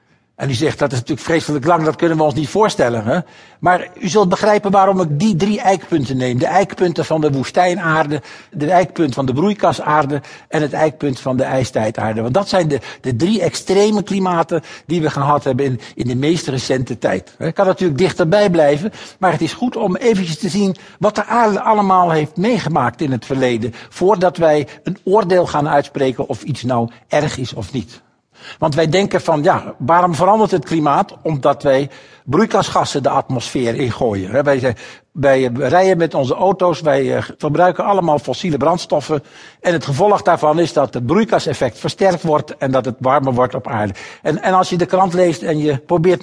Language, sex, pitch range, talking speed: Dutch, male, 135-185 Hz, 190 wpm